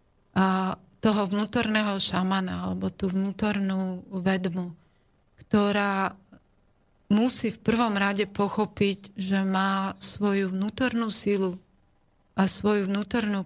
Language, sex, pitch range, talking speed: Slovak, female, 185-205 Hz, 100 wpm